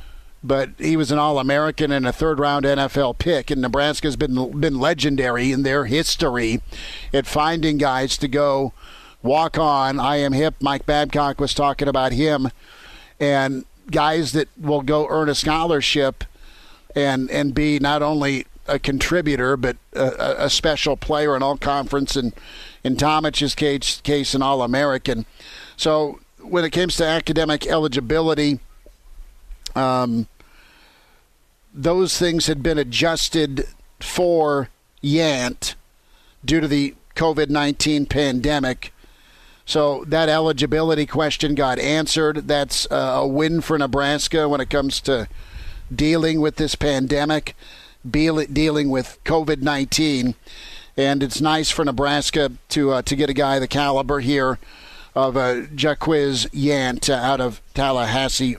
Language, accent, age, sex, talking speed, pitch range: English, American, 50-69, male, 130 wpm, 135-155 Hz